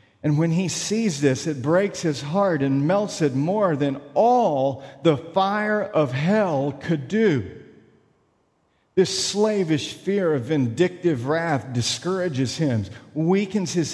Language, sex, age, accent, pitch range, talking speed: English, male, 50-69, American, 135-195 Hz, 135 wpm